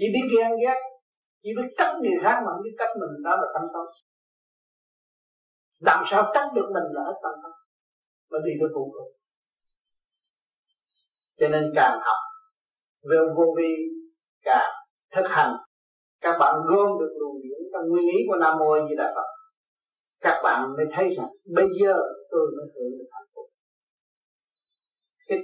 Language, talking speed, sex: Vietnamese, 165 wpm, male